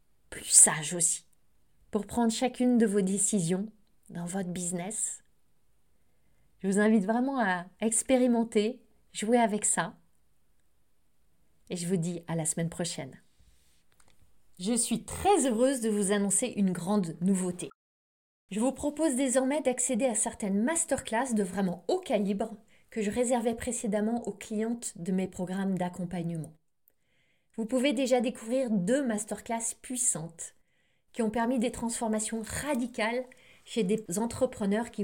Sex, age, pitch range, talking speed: female, 20-39, 200-250 Hz, 135 wpm